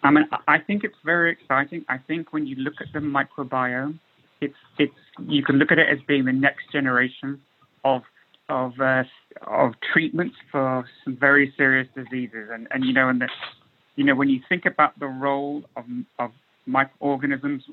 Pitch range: 130-150 Hz